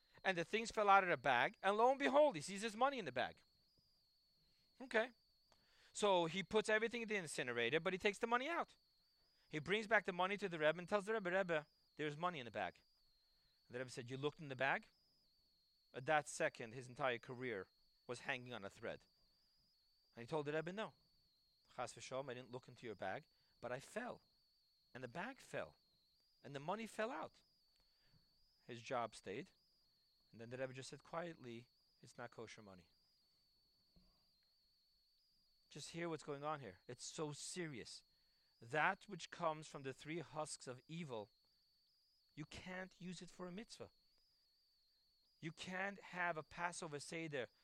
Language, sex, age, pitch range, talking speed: English, male, 40-59, 130-185 Hz, 180 wpm